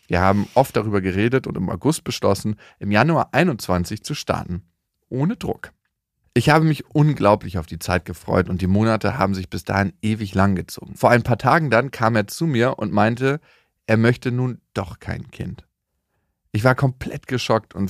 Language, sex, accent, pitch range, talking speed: German, male, German, 100-120 Hz, 190 wpm